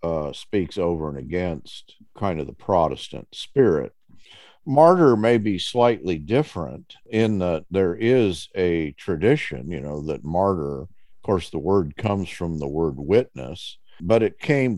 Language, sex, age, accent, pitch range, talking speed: English, male, 50-69, American, 80-110 Hz, 150 wpm